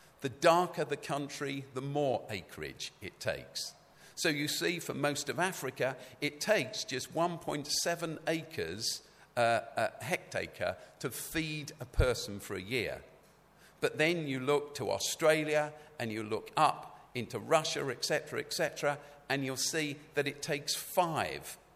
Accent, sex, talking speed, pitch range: British, male, 145 wpm, 125-155 Hz